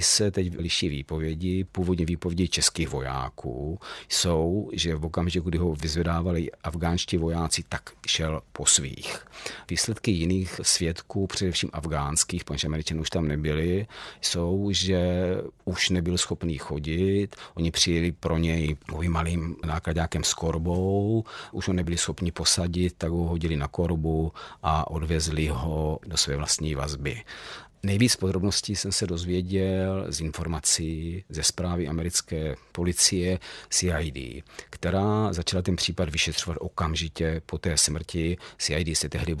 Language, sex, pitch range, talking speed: Czech, male, 80-90 Hz, 130 wpm